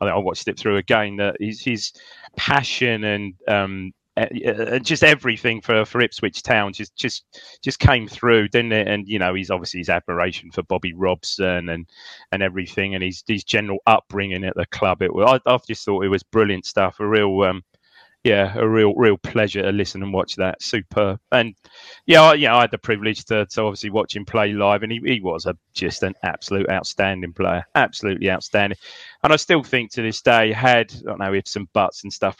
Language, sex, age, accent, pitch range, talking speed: English, male, 30-49, British, 95-110 Hz, 210 wpm